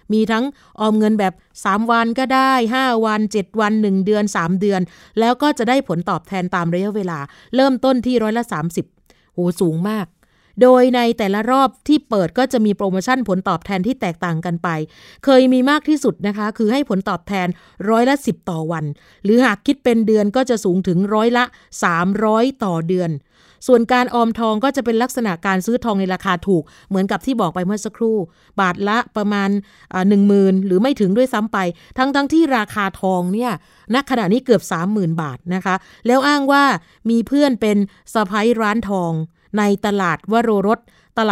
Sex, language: female, Thai